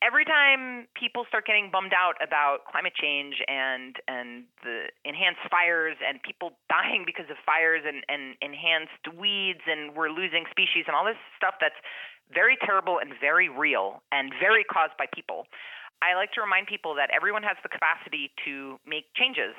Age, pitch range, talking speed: 30-49, 155-215 Hz, 175 wpm